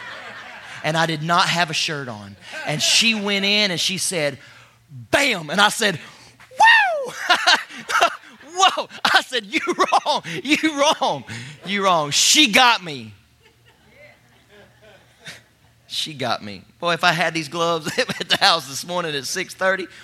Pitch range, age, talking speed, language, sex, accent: 140-195 Hz, 30-49, 145 wpm, English, male, American